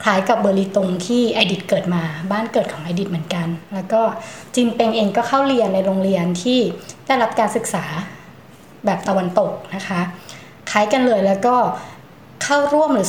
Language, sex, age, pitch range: Thai, female, 20-39, 185-235 Hz